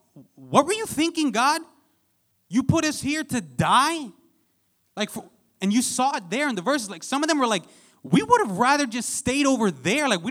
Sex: male